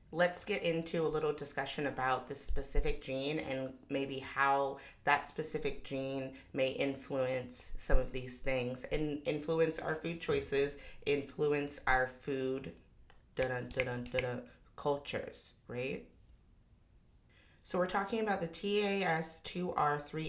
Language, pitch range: English, 130-150 Hz